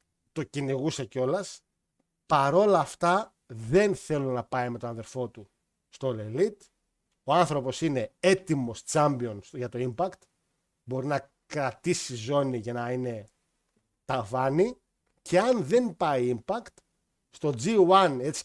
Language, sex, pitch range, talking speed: Greek, male, 125-180 Hz, 125 wpm